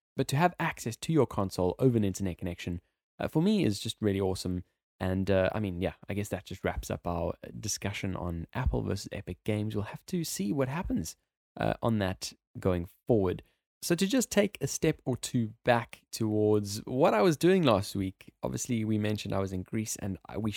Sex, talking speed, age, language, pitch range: male, 210 wpm, 20-39, English, 95-130 Hz